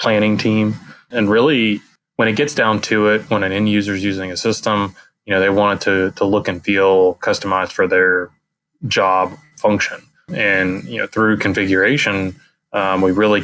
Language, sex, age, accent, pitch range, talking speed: English, male, 20-39, American, 95-105 Hz, 185 wpm